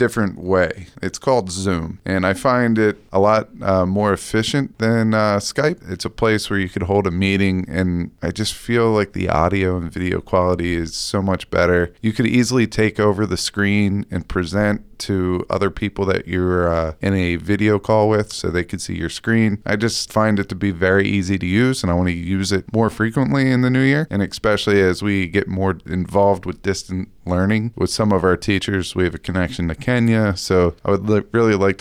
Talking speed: 215 wpm